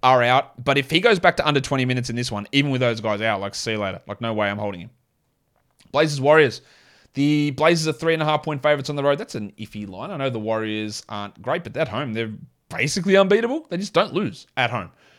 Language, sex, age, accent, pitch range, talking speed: English, male, 30-49, Australian, 120-160 Hz, 255 wpm